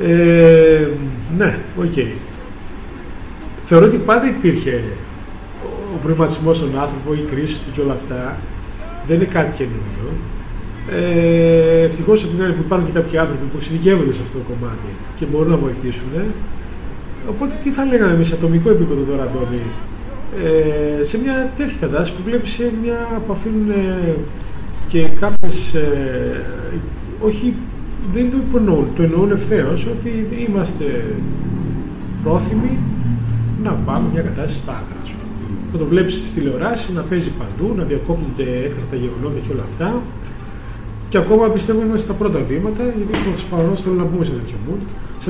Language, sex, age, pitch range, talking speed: Greek, male, 40-59, 125-195 Hz, 145 wpm